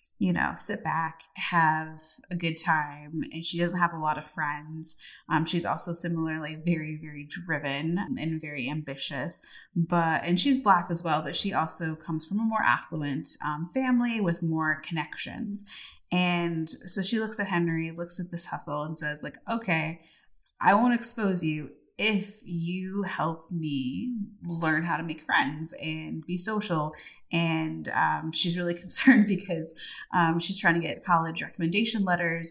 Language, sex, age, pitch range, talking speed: English, female, 20-39, 160-195 Hz, 165 wpm